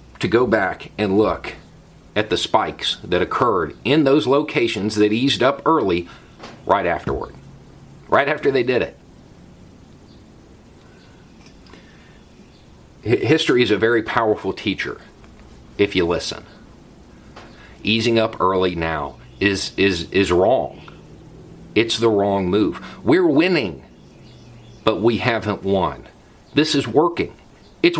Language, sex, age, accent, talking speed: English, male, 40-59, American, 120 wpm